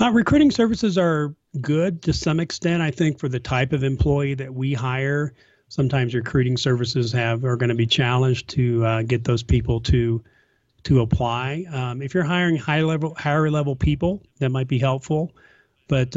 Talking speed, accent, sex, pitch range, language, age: 175 wpm, American, male, 120-140 Hz, English, 40-59